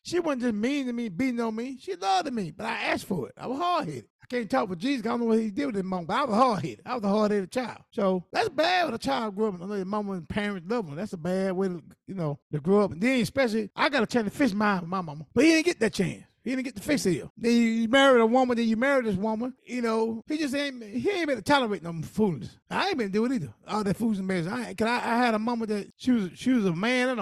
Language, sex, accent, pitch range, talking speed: English, male, American, 195-250 Hz, 315 wpm